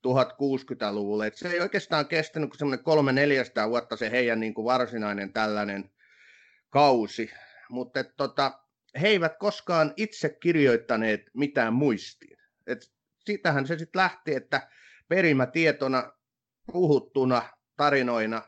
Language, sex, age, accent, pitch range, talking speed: Finnish, male, 30-49, native, 115-150 Hz, 115 wpm